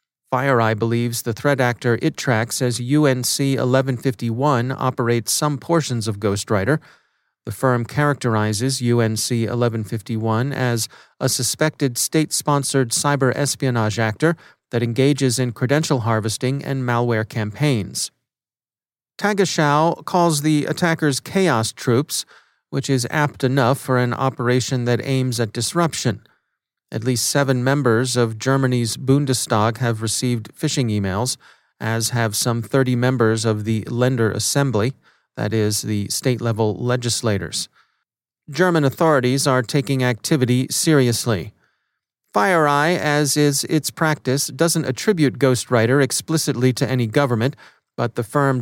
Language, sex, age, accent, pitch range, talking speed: English, male, 40-59, American, 115-140 Hz, 120 wpm